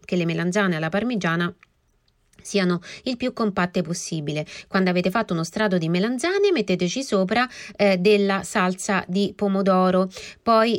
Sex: female